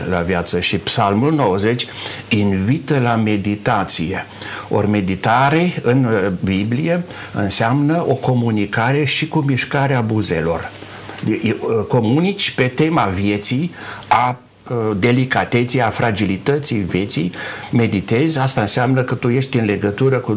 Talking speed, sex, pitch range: 110 wpm, male, 100-125 Hz